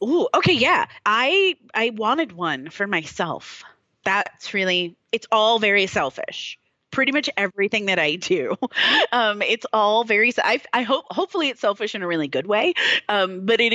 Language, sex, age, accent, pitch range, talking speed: English, female, 30-49, American, 175-245 Hz, 170 wpm